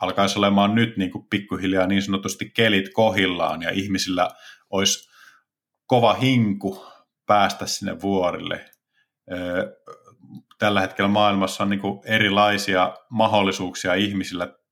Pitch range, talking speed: 95-110 Hz, 95 wpm